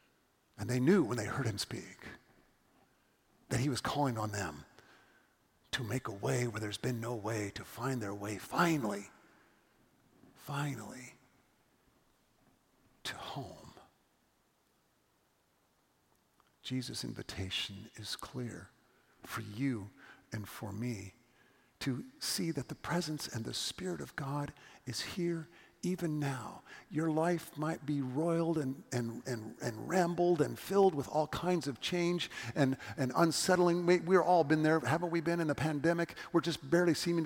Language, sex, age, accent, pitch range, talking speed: English, male, 50-69, American, 120-165 Hz, 140 wpm